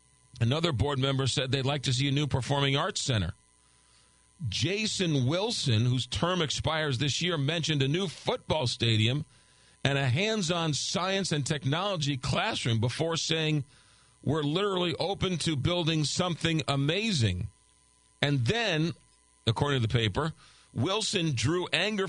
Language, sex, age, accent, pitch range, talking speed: English, male, 50-69, American, 120-165 Hz, 135 wpm